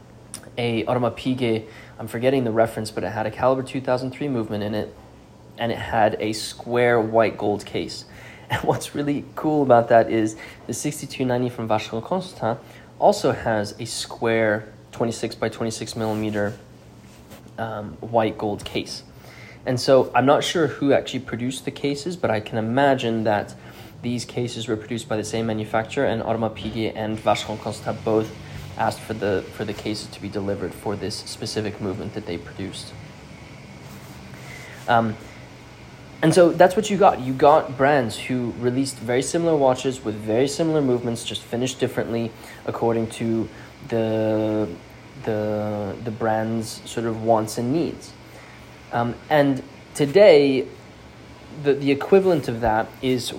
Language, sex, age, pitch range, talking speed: English, male, 20-39, 110-130 Hz, 155 wpm